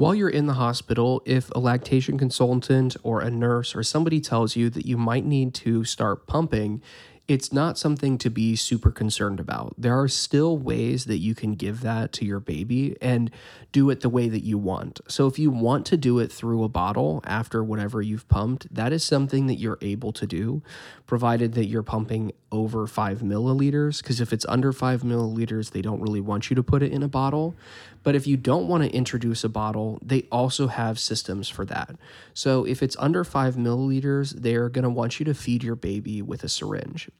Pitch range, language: 110-135 Hz, English